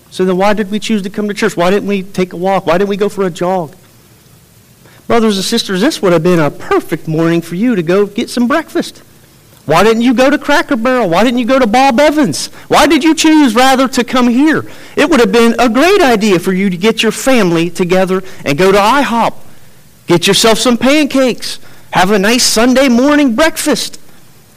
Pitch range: 165-245 Hz